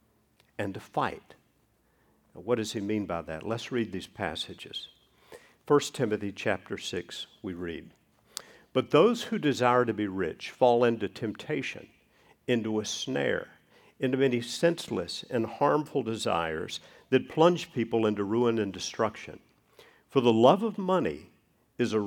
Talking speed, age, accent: 145 wpm, 50-69, American